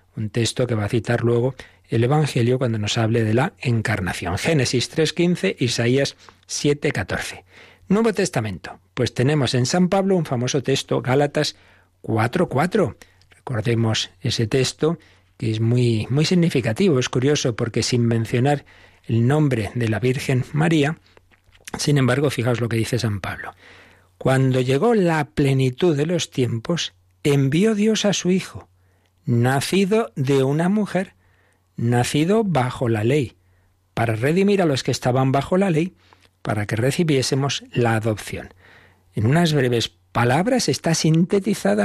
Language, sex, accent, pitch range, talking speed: Spanish, male, Spanish, 110-155 Hz, 140 wpm